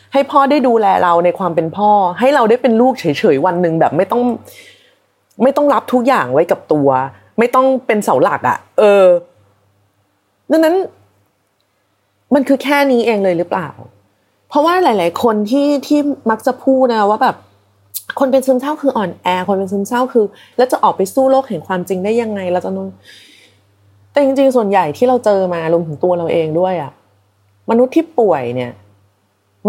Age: 30-49